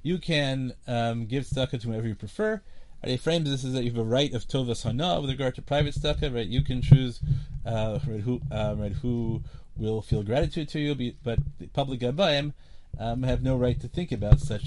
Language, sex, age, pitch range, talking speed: English, male, 30-49, 105-140 Hz, 215 wpm